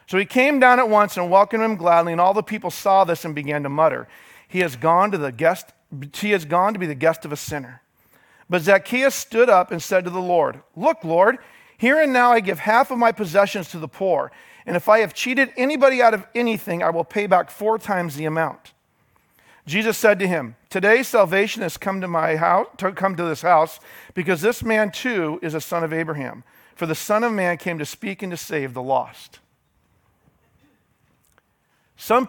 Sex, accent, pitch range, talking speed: male, American, 160-205 Hz, 215 wpm